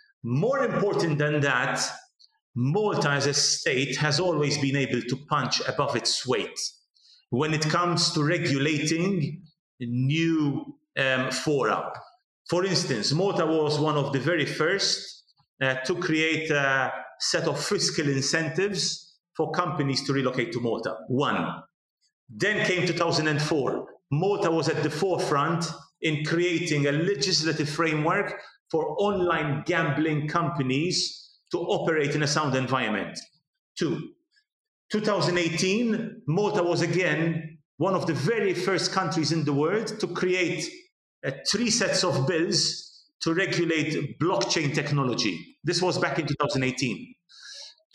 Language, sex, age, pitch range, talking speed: English, male, 40-59, 145-190 Hz, 130 wpm